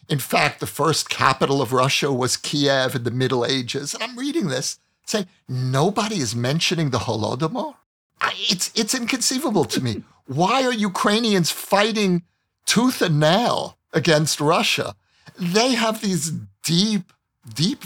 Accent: American